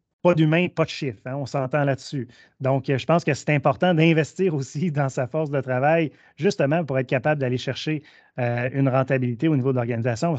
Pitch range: 130-155 Hz